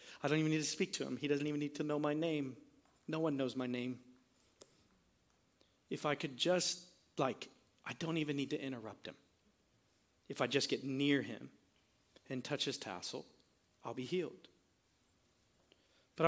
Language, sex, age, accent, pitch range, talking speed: English, male, 40-59, American, 125-155 Hz, 175 wpm